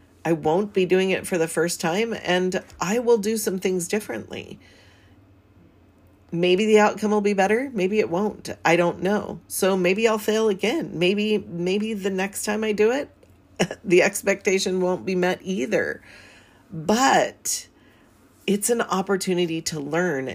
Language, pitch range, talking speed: English, 170-210 Hz, 155 wpm